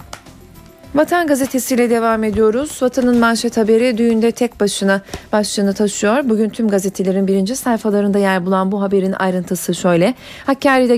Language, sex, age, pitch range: Turkish, female, 40-59, 190-250 Hz